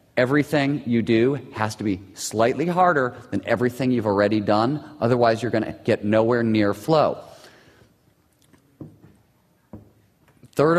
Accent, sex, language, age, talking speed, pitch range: American, male, English, 40-59, 115 wpm, 110-145 Hz